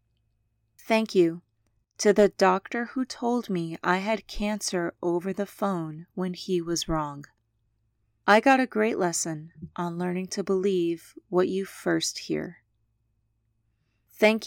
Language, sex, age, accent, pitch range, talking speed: English, female, 30-49, American, 140-200 Hz, 135 wpm